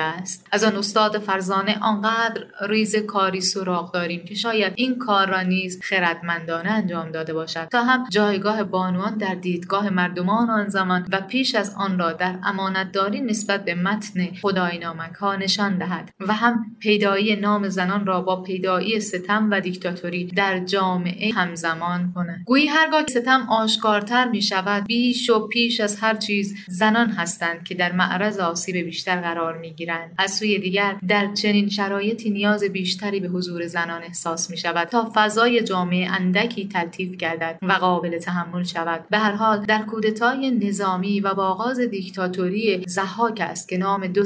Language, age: Persian, 30-49